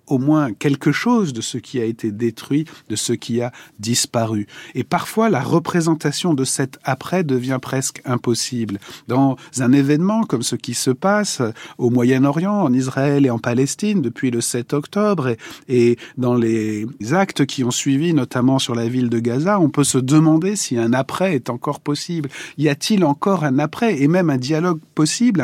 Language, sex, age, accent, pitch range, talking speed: French, male, 40-59, French, 120-155 Hz, 185 wpm